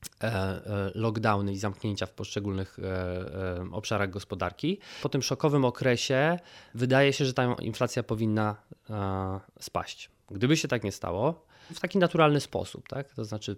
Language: Polish